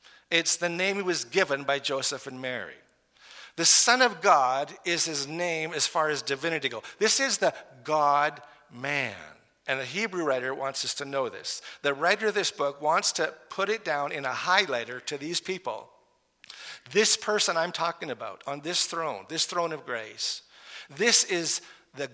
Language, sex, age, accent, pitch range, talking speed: English, male, 50-69, American, 145-200 Hz, 180 wpm